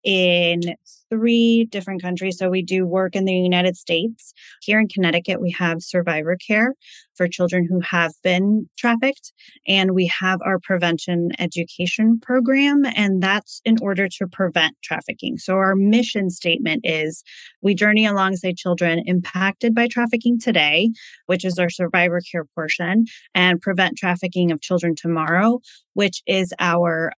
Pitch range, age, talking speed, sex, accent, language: 175-215 Hz, 20-39, 150 wpm, female, American, English